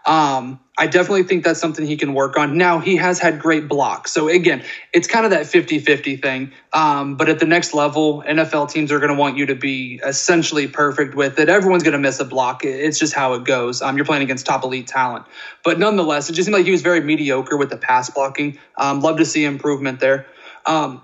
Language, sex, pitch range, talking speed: English, male, 135-165 Hz, 230 wpm